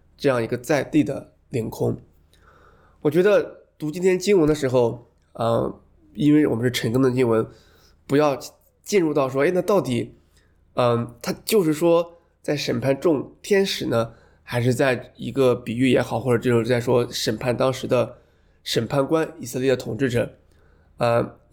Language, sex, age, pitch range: Chinese, male, 20-39, 115-145 Hz